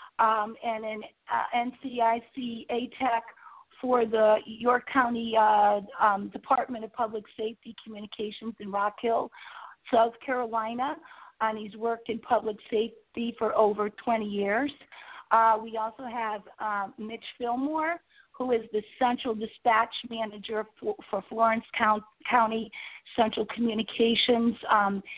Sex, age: female, 40-59